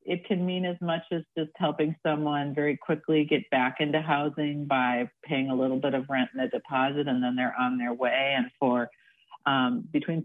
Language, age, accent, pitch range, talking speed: English, 40-59, American, 125-165 Hz, 205 wpm